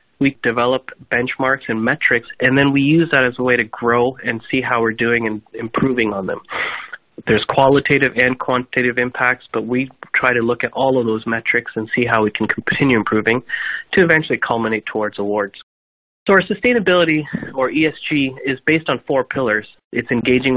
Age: 30-49